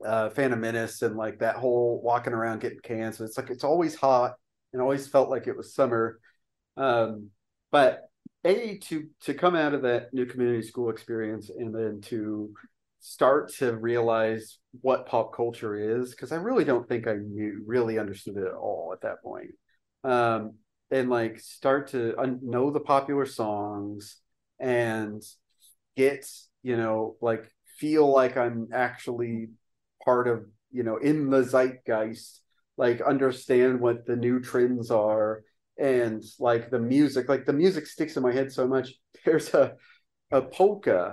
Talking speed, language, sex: 160 wpm, English, male